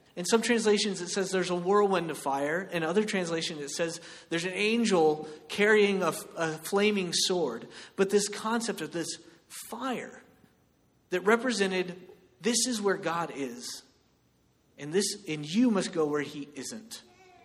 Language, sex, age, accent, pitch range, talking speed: English, male, 30-49, American, 170-230 Hz, 150 wpm